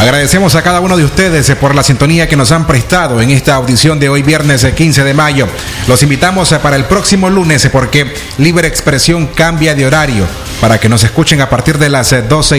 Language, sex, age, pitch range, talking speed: Spanish, male, 30-49, 120-155 Hz, 205 wpm